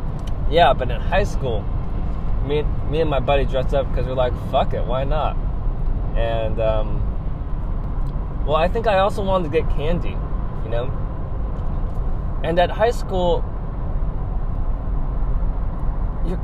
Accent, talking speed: American, 135 wpm